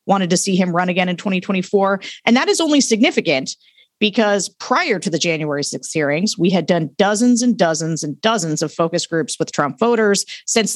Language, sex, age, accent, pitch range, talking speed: English, female, 40-59, American, 175-235 Hz, 195 wpm